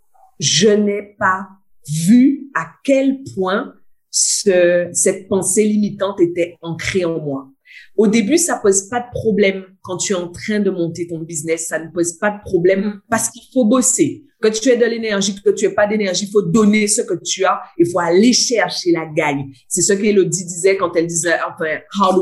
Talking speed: 205 wpm